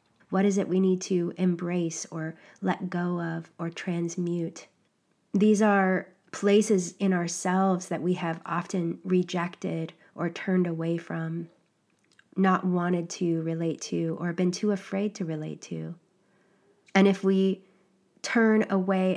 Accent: American